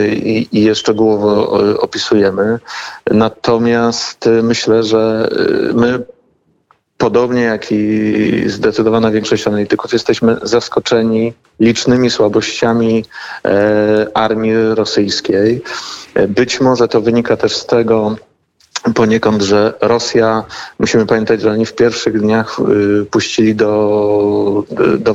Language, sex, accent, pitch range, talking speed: Polish, male, native, 105-115 Hz, 100 wpm